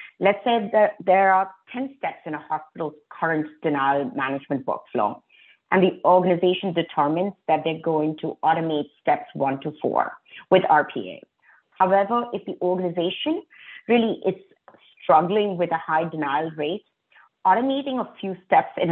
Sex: female